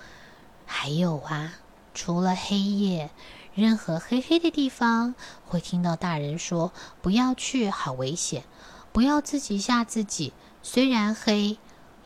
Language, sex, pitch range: Chinese, female, 165-225 Hz